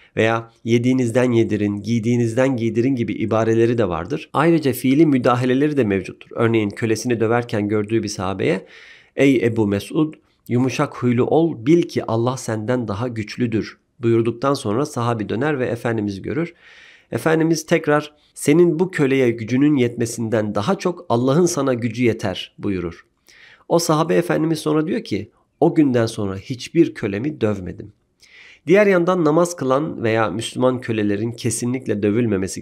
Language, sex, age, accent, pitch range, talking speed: Turkish, male, 50-69, native, 110-150 Hz, 135 wpm